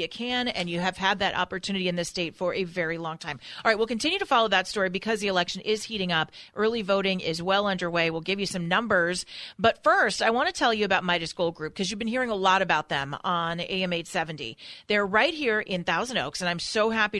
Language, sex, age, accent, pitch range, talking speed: English, female, 40-59, American, 185-250 Hz, 250 wpm